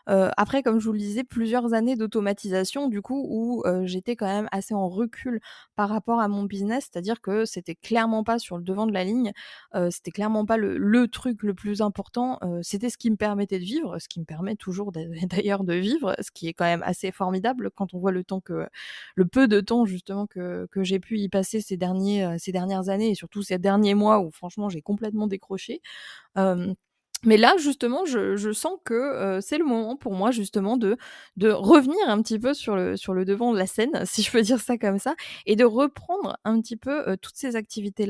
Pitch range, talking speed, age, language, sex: 195-240 Hz, 230 wpm, 20-39, French, female